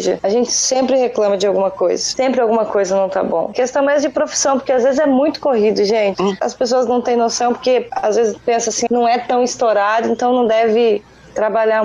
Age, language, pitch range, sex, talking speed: 10-29, Portuguese, 215-260 Hz, female, 225 wpm